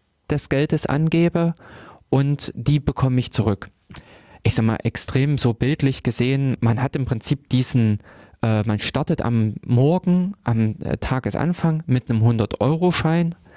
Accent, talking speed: German, 135 wpm